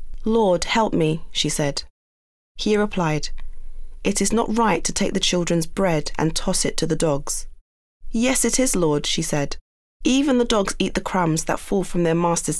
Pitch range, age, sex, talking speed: 155-195 Hz, 30-49, female, 185 wpm